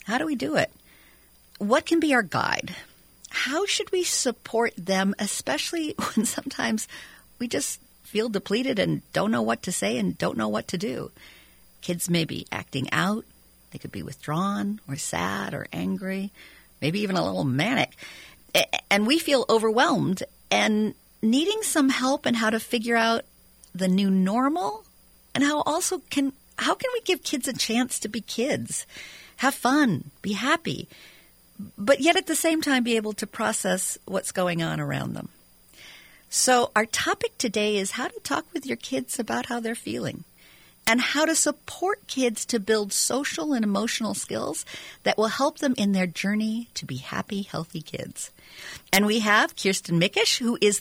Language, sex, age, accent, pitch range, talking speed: English, female, 50-69, American, 200-280 Hz, 170 wpm